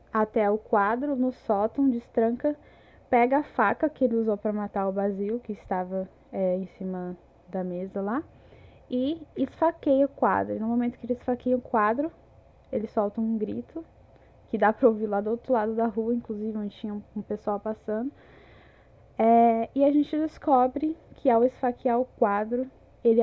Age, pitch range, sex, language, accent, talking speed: 10-29, 215-260 Hz, female, Portuguese, Brazilian, 175 wpm